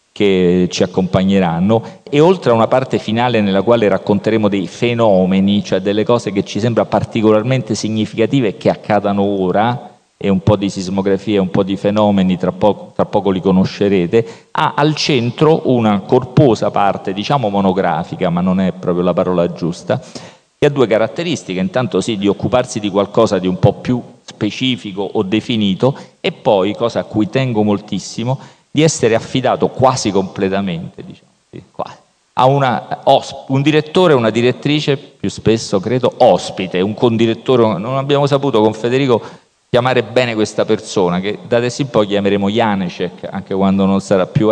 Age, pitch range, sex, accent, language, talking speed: 40-59, 100-130 Hz, male, native, Italian, 165 wpm